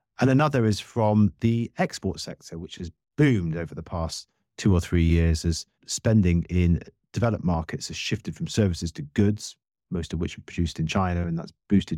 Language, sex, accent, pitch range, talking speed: English, male, British, 85-125 Hz, 190 wpm